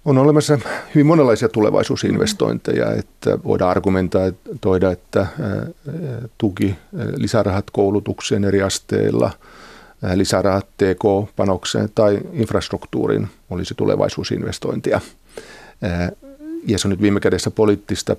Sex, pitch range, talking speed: male, 90-110 Hz, 95 wpm